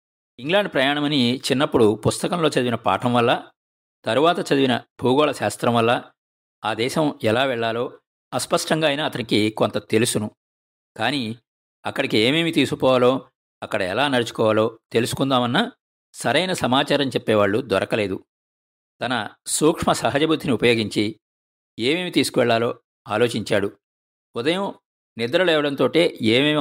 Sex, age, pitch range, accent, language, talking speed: male, 50-69, 105-140 Hz, native, Telugu, 95 wpm